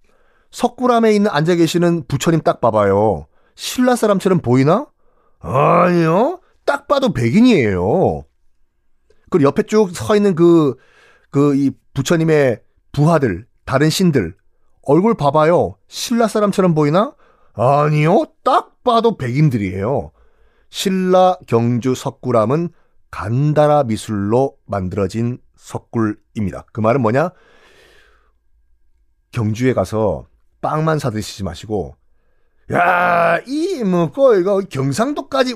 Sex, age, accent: male, 40-59, native